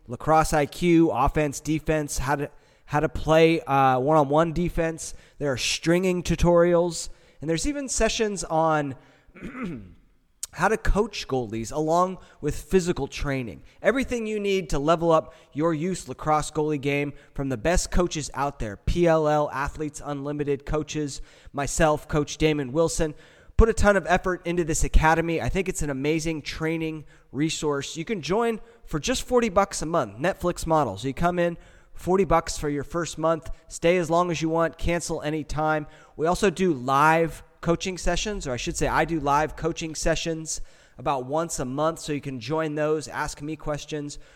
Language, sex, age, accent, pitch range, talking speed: English, male, 20-39, American, 145-175 Hz, 170 wpm